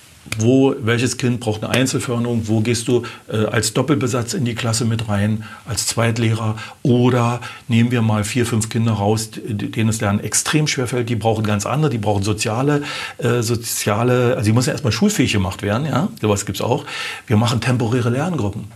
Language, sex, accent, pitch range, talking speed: German, male, German, 105-120 Hz, 190 wpm